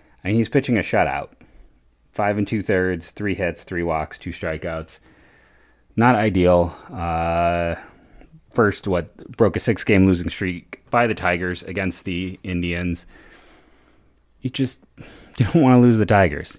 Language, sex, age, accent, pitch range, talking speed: English, male, 30-49, American, 85-100 Hz, 135 wpm